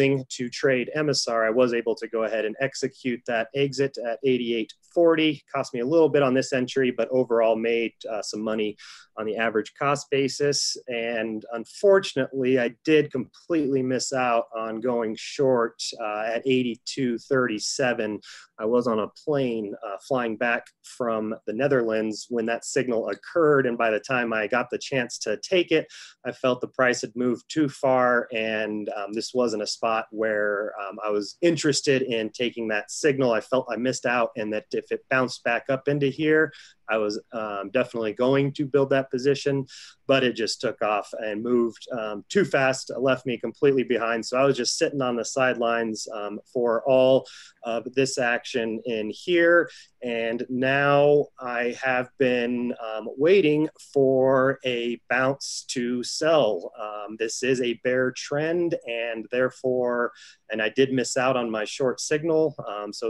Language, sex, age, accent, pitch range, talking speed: English, male, 30-49, American, 115-135 Hz, 170 wpm